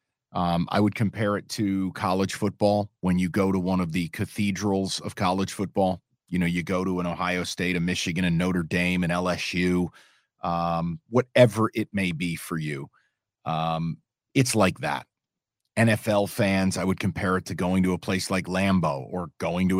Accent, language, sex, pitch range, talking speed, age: American, English, male, 90-110 Hz, 185 wpm, 40-59